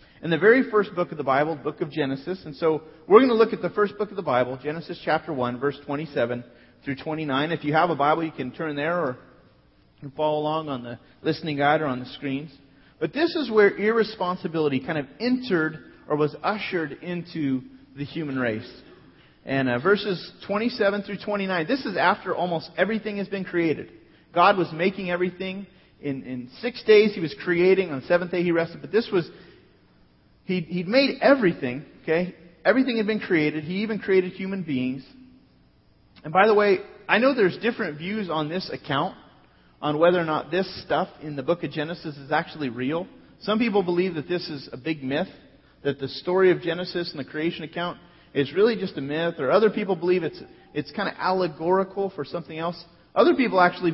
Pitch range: 150-190 Hz